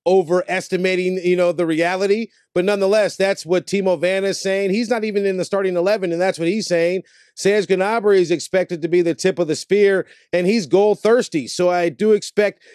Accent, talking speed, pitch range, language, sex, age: American, 205 wpm, 180-205 Hz, English, male, 30-49